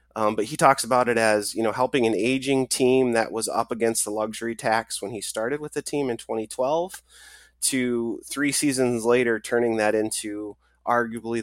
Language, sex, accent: English, male, American